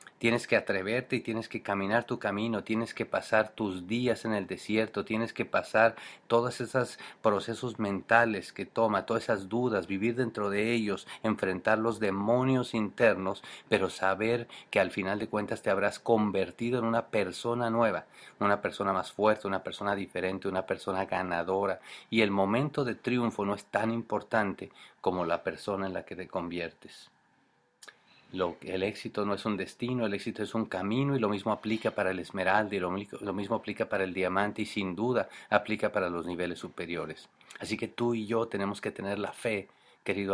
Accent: Mexican